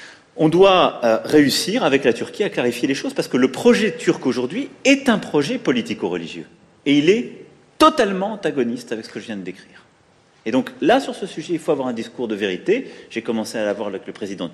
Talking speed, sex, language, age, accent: 220 wpm, male, French, 40-59, French